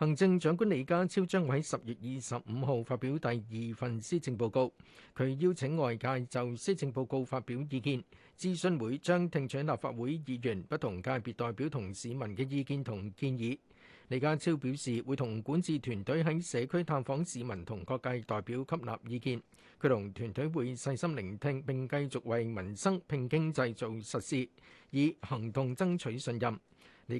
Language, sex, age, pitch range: Chinese, male, 50-69, 120-150 Hz